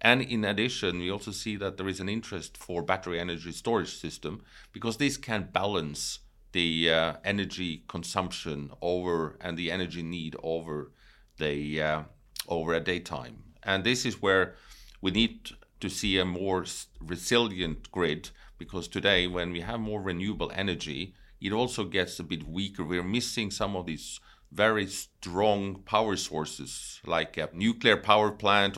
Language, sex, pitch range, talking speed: English, male, 85-100 Hz, 160 wpm